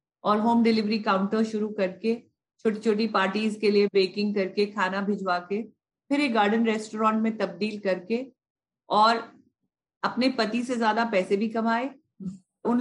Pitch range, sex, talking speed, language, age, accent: 205-245 Hz, female, 150 wpm, Hindi, 50-69, native